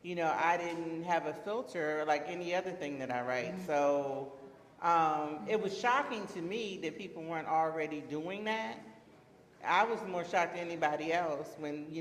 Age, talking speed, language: 40-59, 180 wpm, English